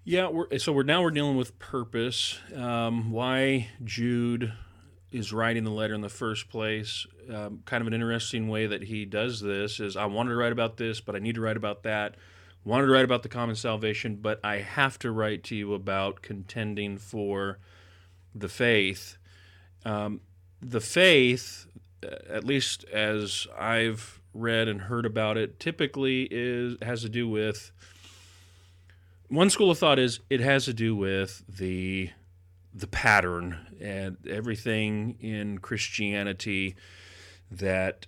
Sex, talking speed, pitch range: male, 155 wpm, 95-120 Hz